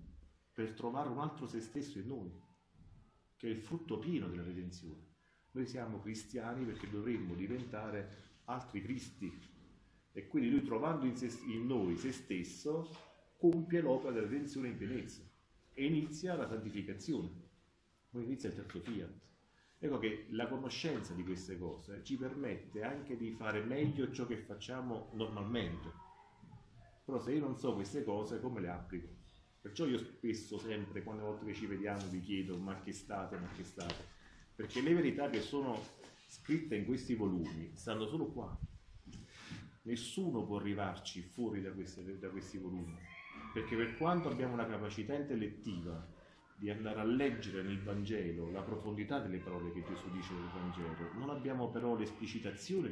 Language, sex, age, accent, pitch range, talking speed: Italian, male, 40-59, native, 95-125 Hz, 160 wpm